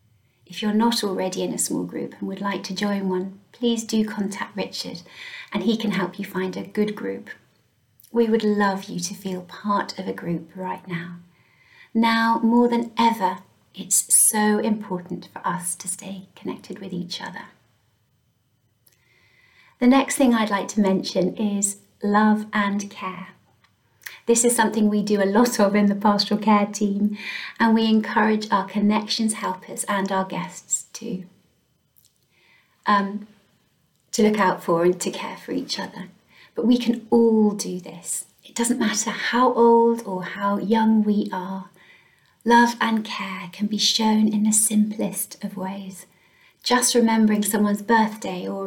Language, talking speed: English, 160 wpm